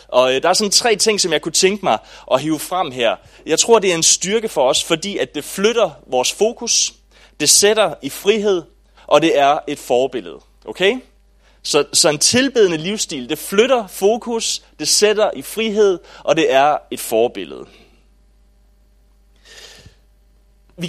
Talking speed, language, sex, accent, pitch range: 165 wpm, English, male, Danish, 130-195 Hz